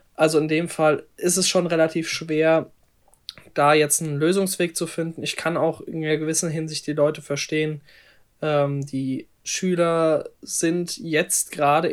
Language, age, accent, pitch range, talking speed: German, 20-39, German, 145-165 Hz, 155 wpm